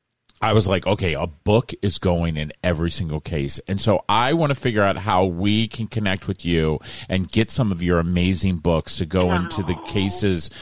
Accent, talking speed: American, 210 wpm